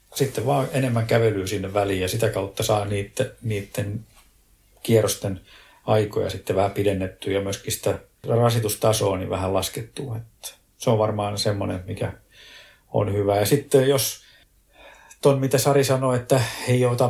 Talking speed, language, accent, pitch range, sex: 145 wpm, Finnish, native, 100-115 Hz, male